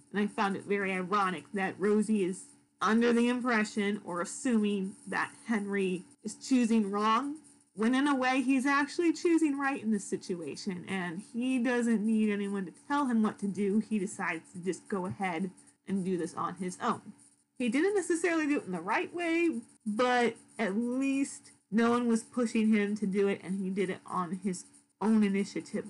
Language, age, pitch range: English, 30-49, 195-235 Hz